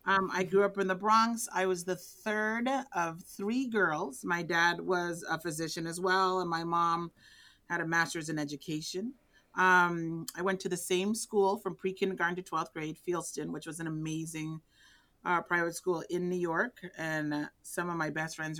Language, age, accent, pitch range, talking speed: English, 30-49, American, 155-185 Hz, 185 wpm